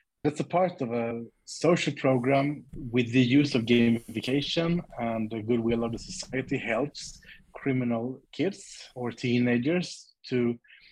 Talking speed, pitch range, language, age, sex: 130 wpm, 115-135 Hz, English, 30-49, male